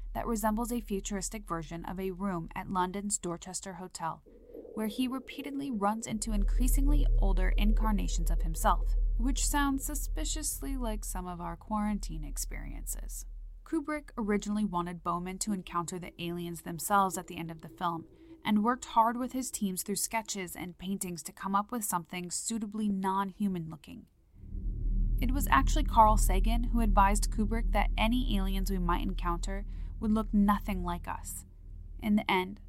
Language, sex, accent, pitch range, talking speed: English, female, American, 170-220 Hz, 160 wpm